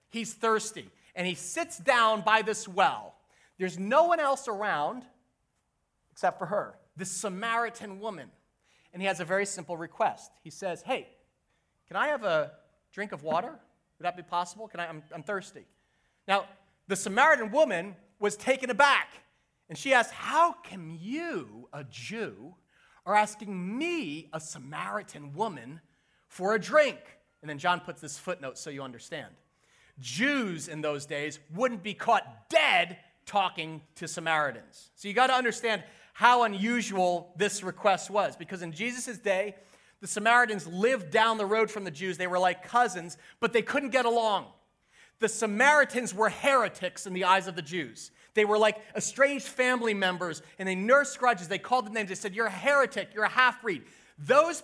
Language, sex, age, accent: English, male, 30-49, American